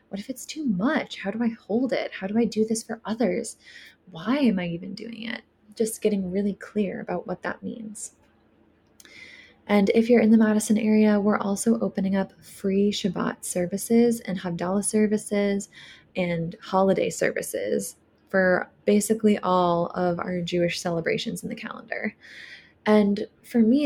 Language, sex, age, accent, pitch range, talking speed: English, female, 20-39, American, 190-225 Hz, 160 wpm